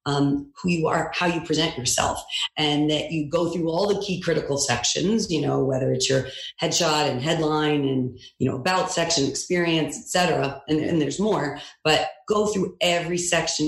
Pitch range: 145-175 Hz